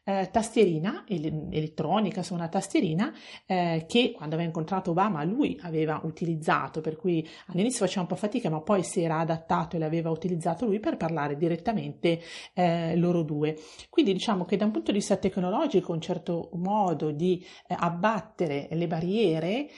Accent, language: native, Italian